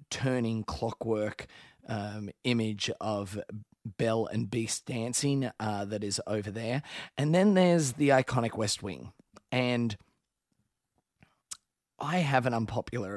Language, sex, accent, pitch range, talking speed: English, male, Australian, 120-155 Hz, 120 wpm